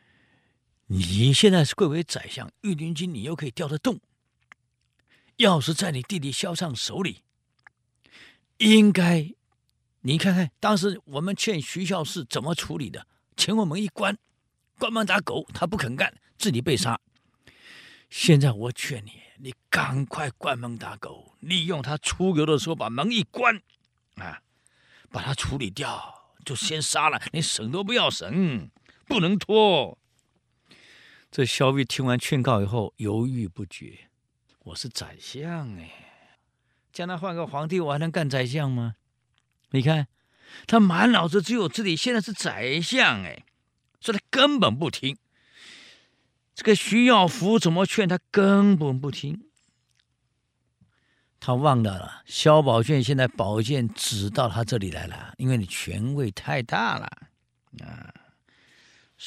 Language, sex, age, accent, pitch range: Chinese, male, 50-69, native, 125-185 Hz